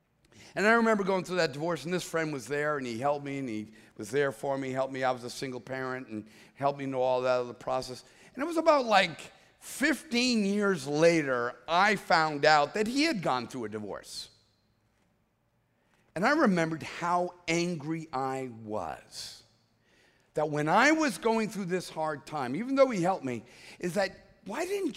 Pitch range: 145-240 Hz